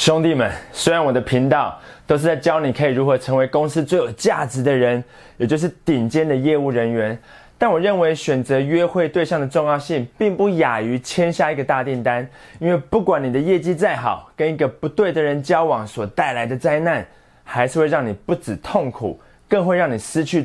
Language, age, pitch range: Chinese, 20-39, 130-175 Hz